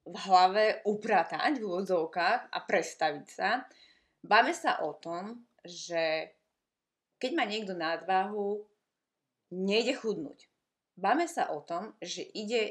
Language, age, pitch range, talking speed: Slovak, 20-39, 175-210 Hz, 120 wpm